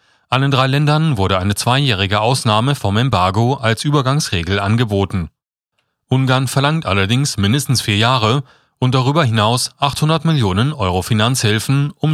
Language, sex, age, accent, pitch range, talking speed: German, male, 30-49, German, 105-135 Hz, 130 wpm